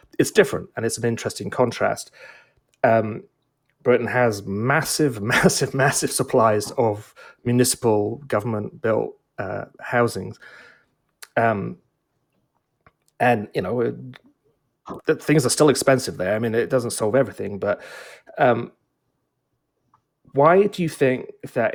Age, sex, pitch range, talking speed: 30-49, male, 110-135 Hz, 120 wpm